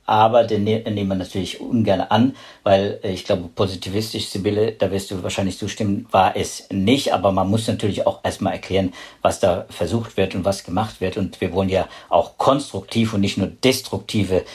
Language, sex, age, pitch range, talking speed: German, male, 50-69, 95-130 Hz, 185 wpm